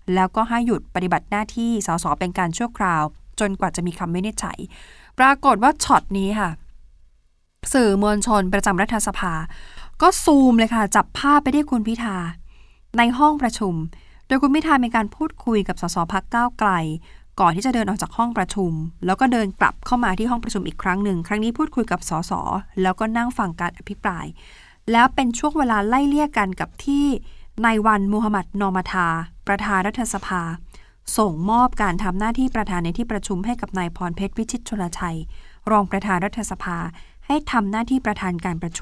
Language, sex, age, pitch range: Thai, female, 20-39, 185-250 Hz